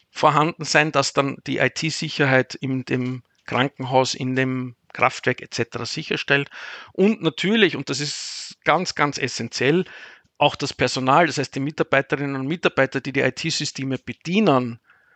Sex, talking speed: male, 140 wpm